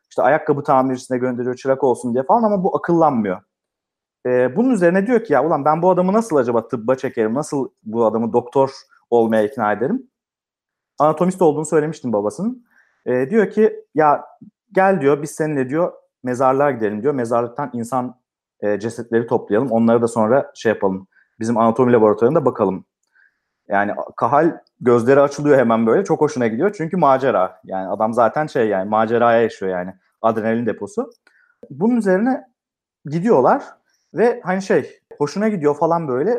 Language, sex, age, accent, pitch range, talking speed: Turkish, male, 40-59, native, 125-205 Hz, 150 wpm